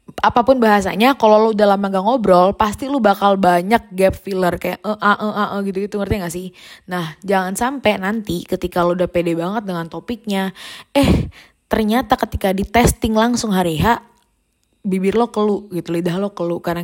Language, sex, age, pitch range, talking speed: Indonesian, female, 20-39, 180-220 Hz, 170 wpm